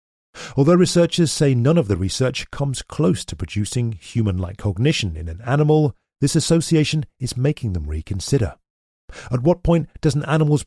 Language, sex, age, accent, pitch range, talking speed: English, male, 40-59, British, 95-145 Hz, 160 wpm